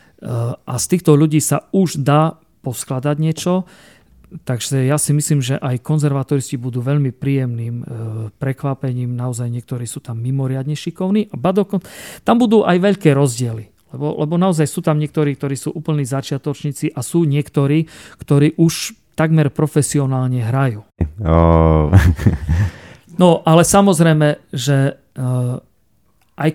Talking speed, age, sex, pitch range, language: 130 wpm, 40-59, male, 130-155 Hz, Slovak